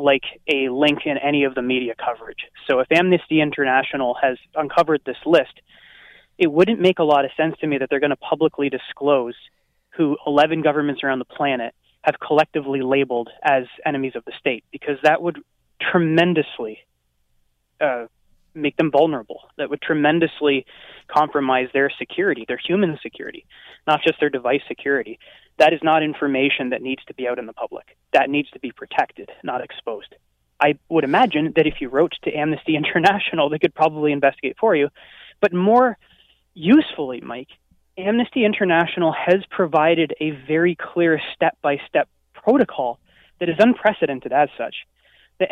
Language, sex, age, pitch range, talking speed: English, male, 20-39, 135-170 Hz, 160 wpm